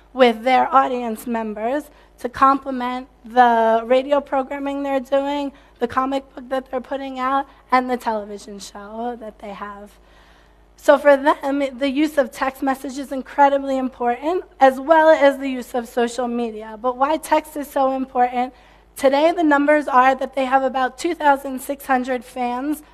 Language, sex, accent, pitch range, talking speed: English, female, American, 240-275 Hz, 155 wpm